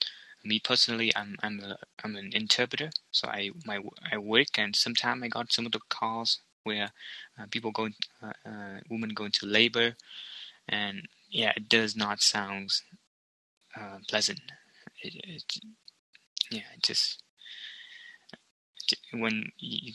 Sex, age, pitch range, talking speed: male, 20-39, 105-120 Hz, 140 wpm